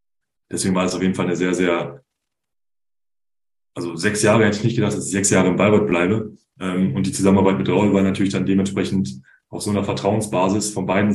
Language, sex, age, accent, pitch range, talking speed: German, male, 20-39, German, 90-105 Hz, 205 wpm